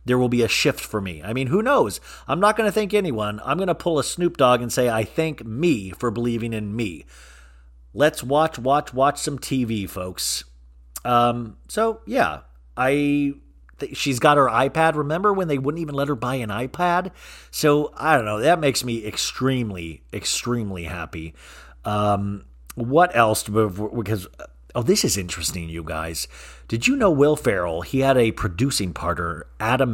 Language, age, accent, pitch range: English, 40-59, American, 95-140 Hz